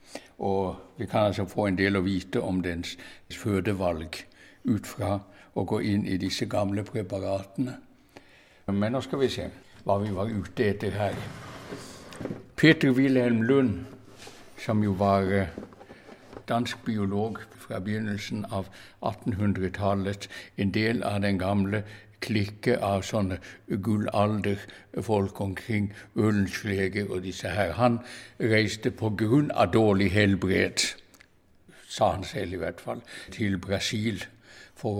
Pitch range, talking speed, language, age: 100-115 Hz, 120 wpm, Danish, 60-79